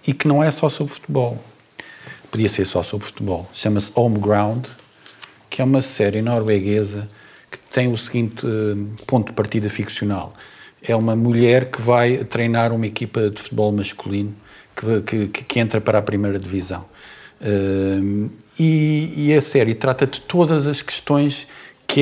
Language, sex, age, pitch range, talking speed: Portuguese, male, 50-69, 105-135 Hz, 155 wpm